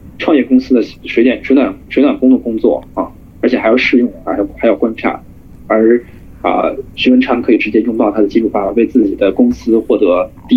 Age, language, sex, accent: 20-39, Chinese, male, native